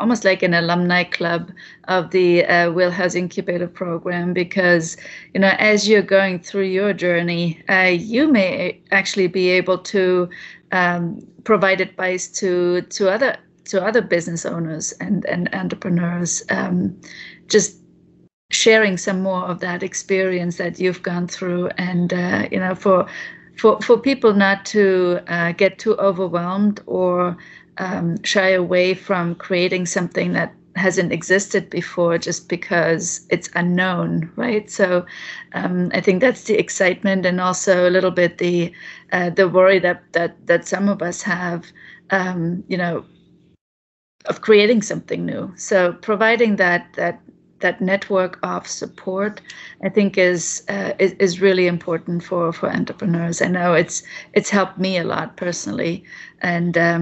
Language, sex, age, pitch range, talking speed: English, female, 30-49, 175-195 Hz, 150 wpm